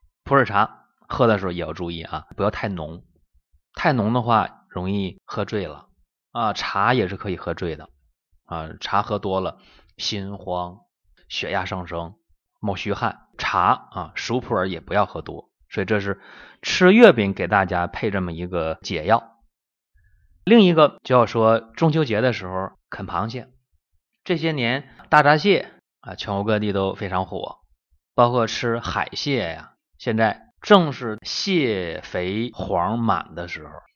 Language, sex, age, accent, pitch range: Chinese, male, 20-39, native, 90-130 Hz